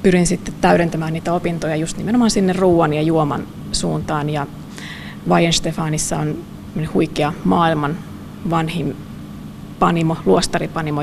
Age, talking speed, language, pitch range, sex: 20-39, 105 wpm, Finnish, 150-185 Hz, female